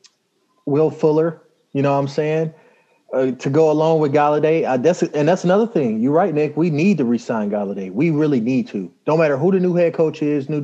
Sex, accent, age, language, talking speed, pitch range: male, American, 30-49, English, 220 wpm, 130-165 Hz